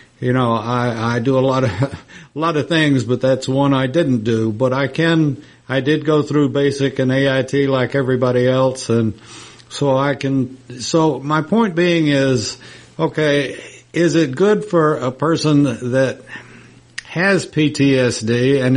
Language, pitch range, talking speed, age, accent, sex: English, 125-150 Hz, 165 wpm, 60-79, American, male